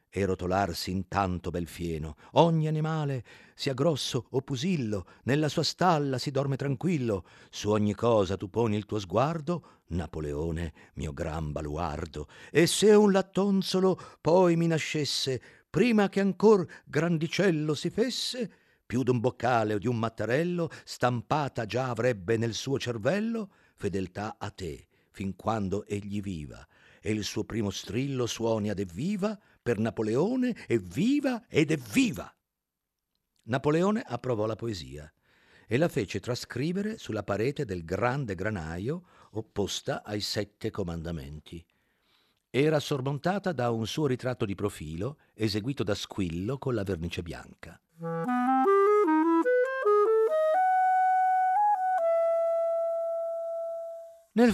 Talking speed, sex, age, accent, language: 120 wpm, male, 50-69, native, Italian